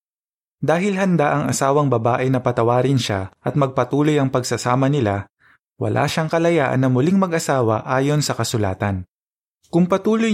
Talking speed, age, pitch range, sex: 140 wpm, 20-39, 120-150 Hz, male